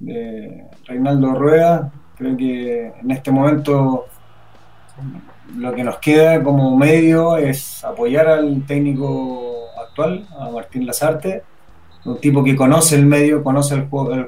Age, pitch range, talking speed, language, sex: 20-39, 125-145 Hz, 130 wpm, Spanish, male